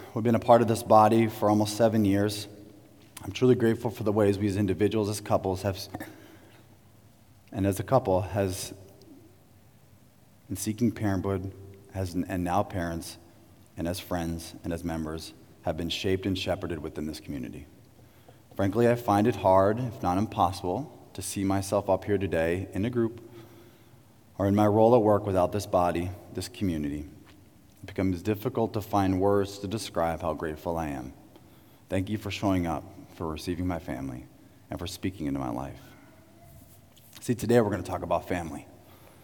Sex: male